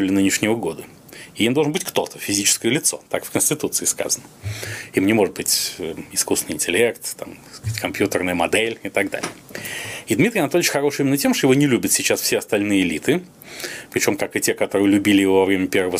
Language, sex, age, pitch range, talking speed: Russian, male, 30-49, 95-120 Hz, 190 wpm